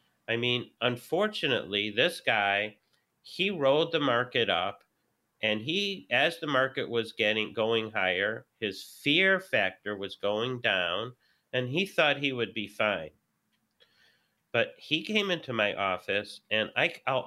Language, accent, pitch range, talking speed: English, American, 115-160 Hz, 140 wpm